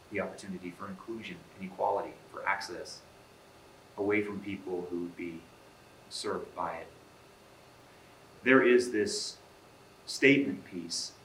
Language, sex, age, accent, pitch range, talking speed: English, male, 30-49, American, 90-110 Hz, 115 wpm